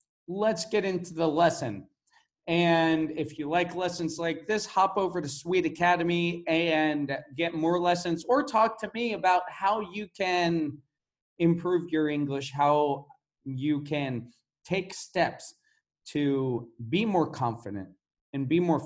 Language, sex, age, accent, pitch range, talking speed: English, male, 40-59, American, 135-175 Hz, 140 wpm